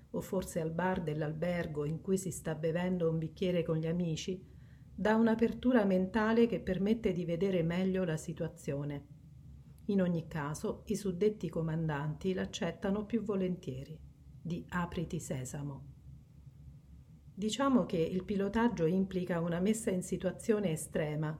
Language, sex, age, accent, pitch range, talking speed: Italian, female, 40-59, native, 160-195 Hz, 130 wpm